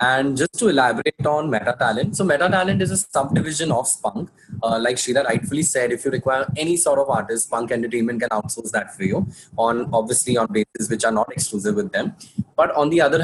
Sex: male